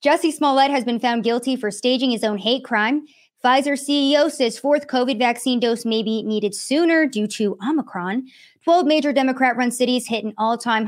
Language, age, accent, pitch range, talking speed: English, 20-39, American, 210-260 Hz, 180 wpm